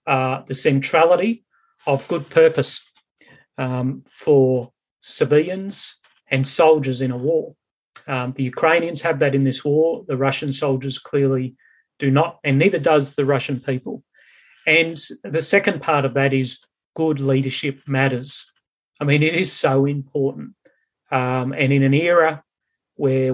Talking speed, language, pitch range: 145 wpm, English, 130-155 Hz